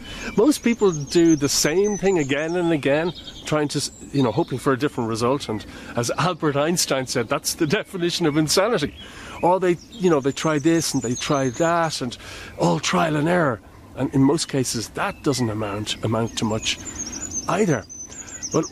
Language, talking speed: English, 180 wpm